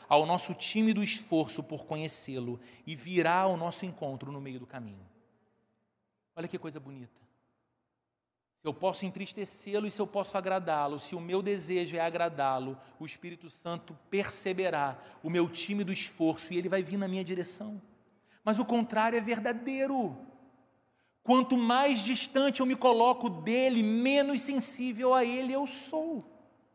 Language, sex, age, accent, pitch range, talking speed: Portuguese, male, 40-59, Brazilian, 140-210 Hz, 150 wpm